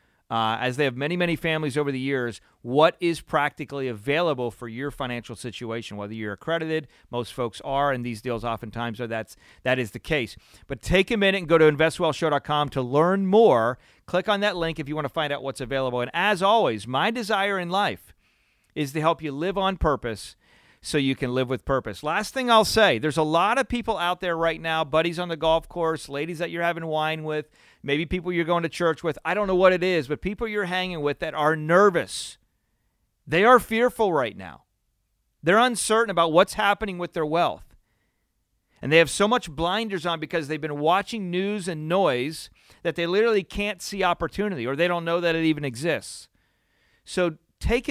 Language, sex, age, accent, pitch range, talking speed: English, male, 40-59, American, 135-185 Hz, 205 wpm